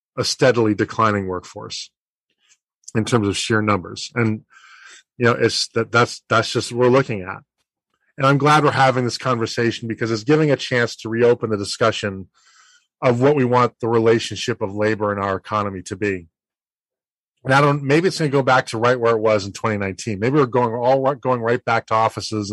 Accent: American